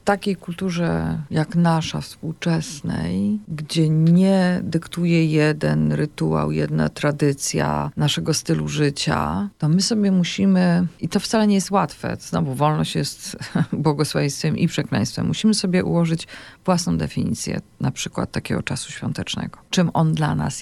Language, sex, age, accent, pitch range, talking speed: Polish, female, 40-59, native, 130-185 Hz, 135 wpm